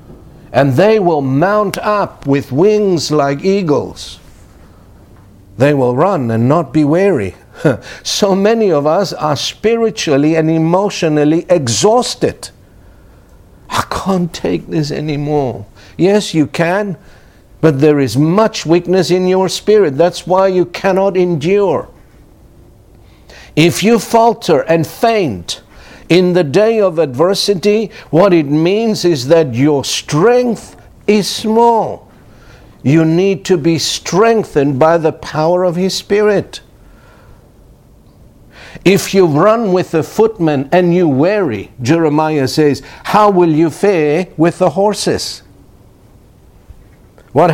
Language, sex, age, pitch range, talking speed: English, male, 60-79, 140-195 Hz, 120 wpm